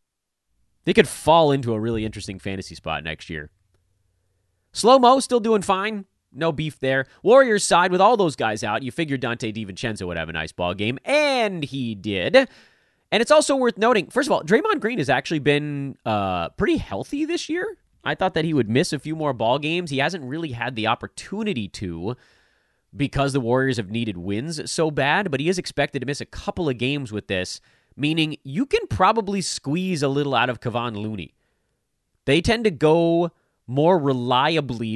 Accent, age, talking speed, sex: American, 30-49, 190 wpm, male